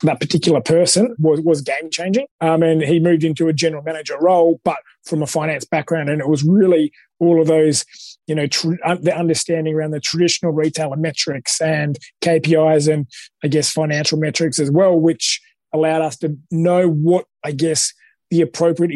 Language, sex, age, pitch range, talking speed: English, male, 20-39, 155-170 Hz, 175 wpm